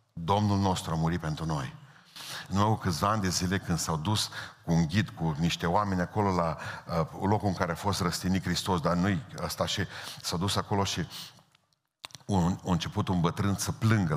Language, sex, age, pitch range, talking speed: Romanian, male, 50-69, 85-100 Hz, 190 wpm